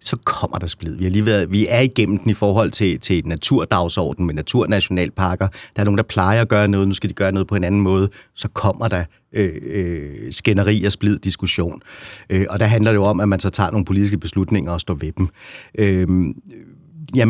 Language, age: Danish, 30-49